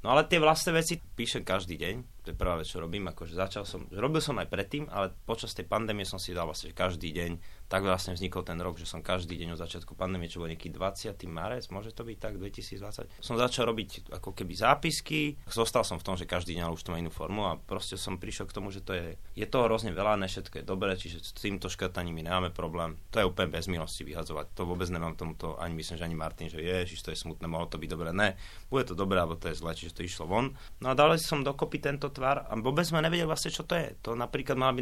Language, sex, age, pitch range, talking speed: Slovak, male, 30-49, 90-115 Hz, 255 wpm